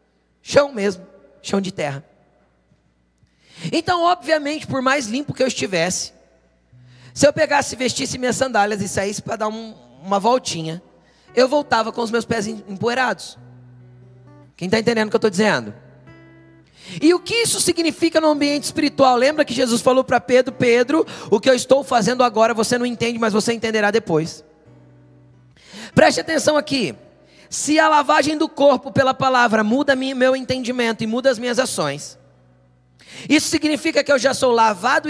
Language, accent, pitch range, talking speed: Portuguese, Brazilian, 190-275 Hz, 160 wpm